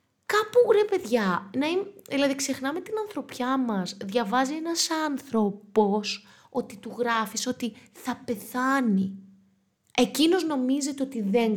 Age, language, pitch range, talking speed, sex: 20-39, Greek, 210-290 Hz, 110 wpm, female